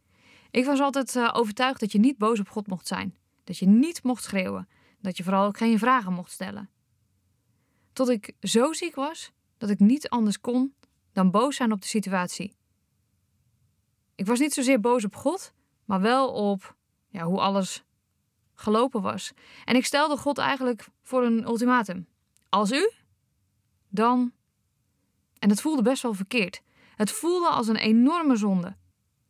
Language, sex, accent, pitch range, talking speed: Dutch, female, Dutch, 195-255 Hz, 160 wpm